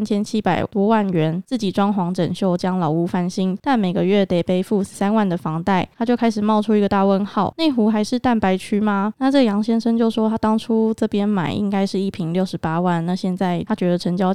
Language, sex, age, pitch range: Chinese, female, 20-39, 185-225 Hz